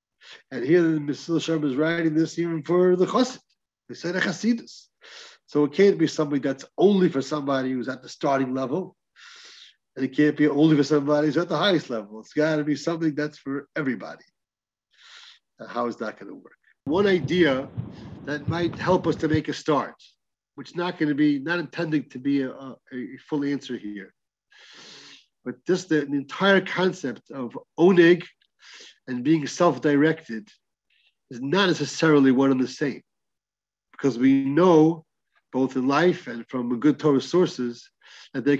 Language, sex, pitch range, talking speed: English, male, 135-175 Hz, 175 wpm